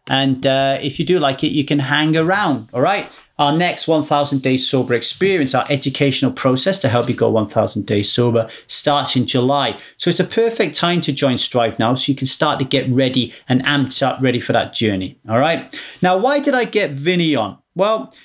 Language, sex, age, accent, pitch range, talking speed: English, male, 30-49, British, 130-175 Hz, 215 wpm